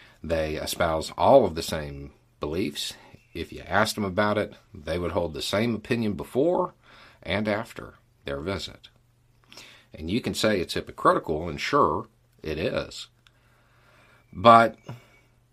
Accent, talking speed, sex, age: American, 135 wpm, male, 50-69